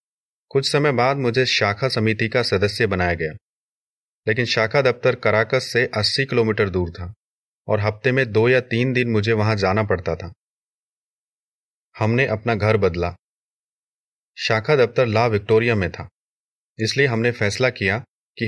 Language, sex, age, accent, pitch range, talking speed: Hindi, male, 30-49, native, 100-125 Hz, 150 wpm